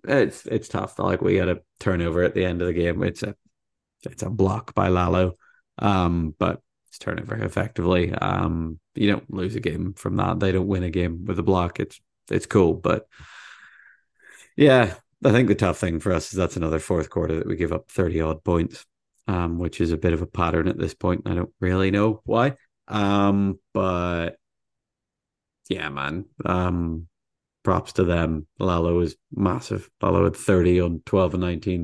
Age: 30-49